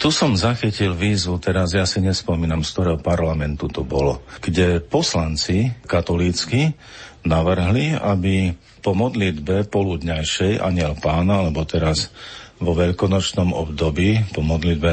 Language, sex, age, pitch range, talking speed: Slovak, male, 50-69, 80-105 Hz, 120 wpm